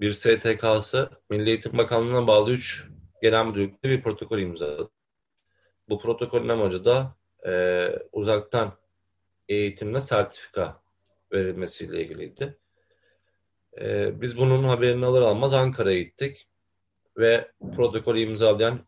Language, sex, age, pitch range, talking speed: Turkish, male, 40-59, 95-125 Hz, 105 wpm